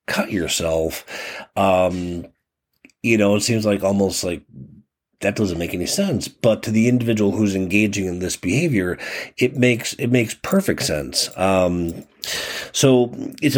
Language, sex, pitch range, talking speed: English, male, 95-120 Hz, 145 wpm